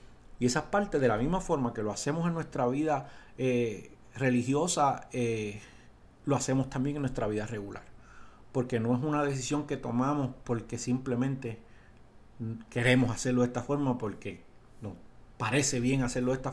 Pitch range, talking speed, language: 115-145 Hz, 160 wpm, Spanish